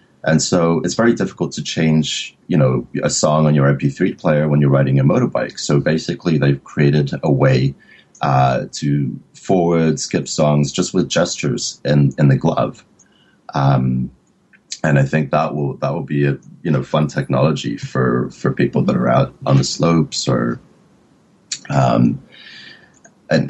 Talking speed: 165 wpm